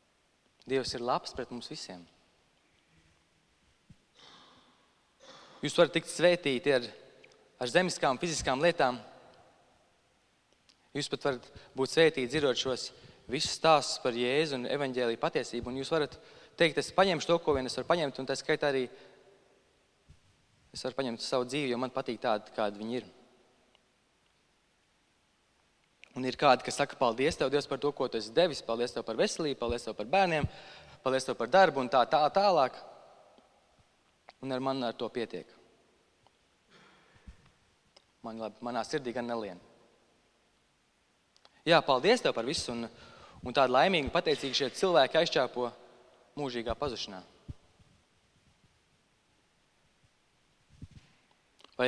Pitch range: 120-150 Hz